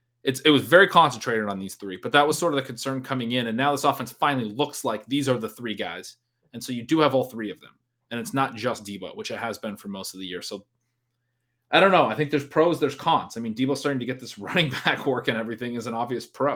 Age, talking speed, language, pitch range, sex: 30-49, 285 wpm, English, 115-145 Hz, male